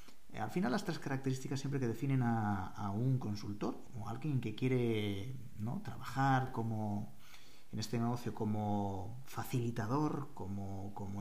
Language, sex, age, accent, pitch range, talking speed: Spanish, male, 40-59, Spanish, 105-135 Hz, 140 wpm